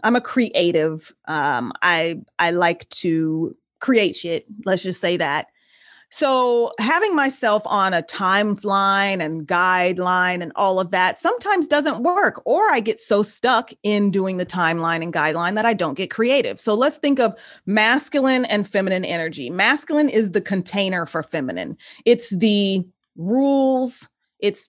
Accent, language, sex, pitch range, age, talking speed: American, English, female, 185-230 Hz, 30-49, 155 wpm